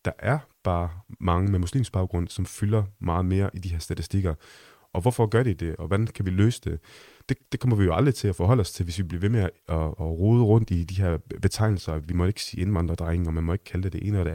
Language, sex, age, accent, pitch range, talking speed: Danish, male, 30-49, native, 90-110 Hz, 275 wpm